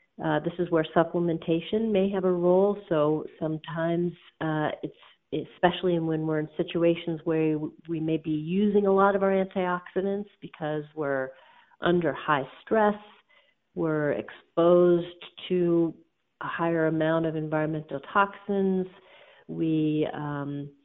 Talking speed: 125 wpm